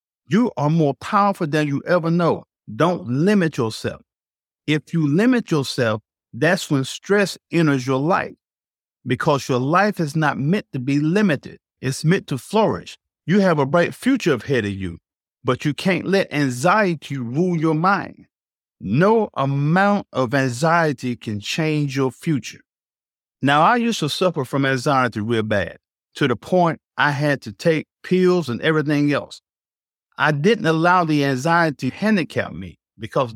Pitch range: 130-175 Hz